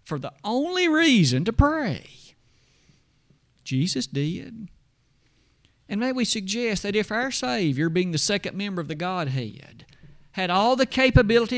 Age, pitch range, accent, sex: 50-69, 140-210 Hz, American, male